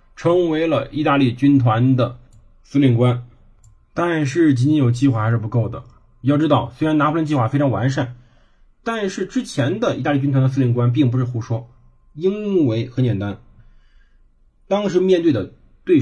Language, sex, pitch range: Chinese, male, 120-170 Hz